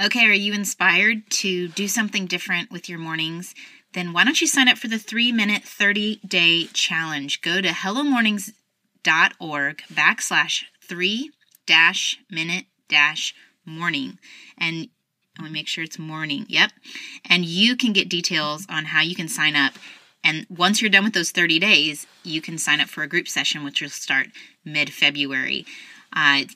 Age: 30-49